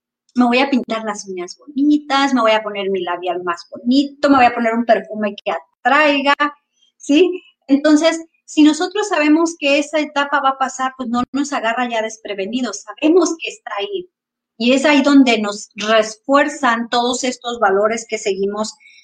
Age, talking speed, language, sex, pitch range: 40-59, 175 wpm, Spanish, female, 215-285 Hz